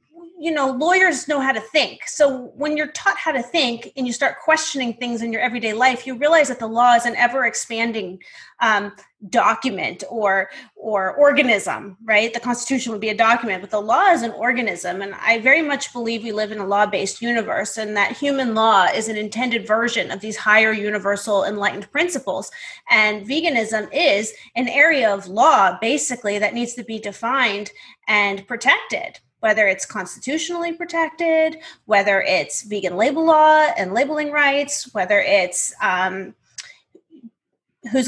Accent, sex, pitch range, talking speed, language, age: American, female, 210-275 Hz, 165 wpm, English, 30-49